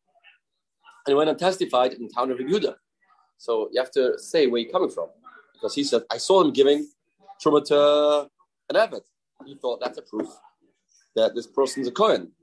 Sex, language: male, English